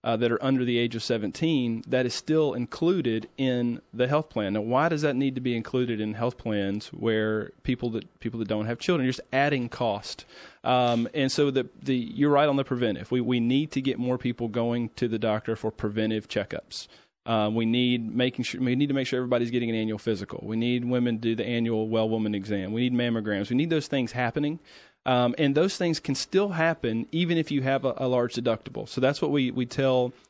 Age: 40-59